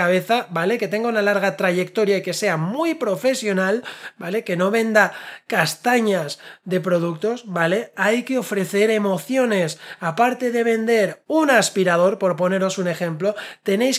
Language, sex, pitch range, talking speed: Spanish, male, 190-235 Hz, 145 wpm